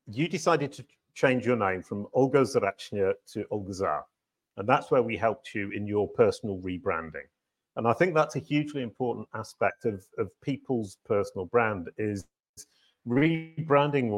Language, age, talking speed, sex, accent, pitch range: English, 40-59, 155 wpm, male, British, 95-135 Hz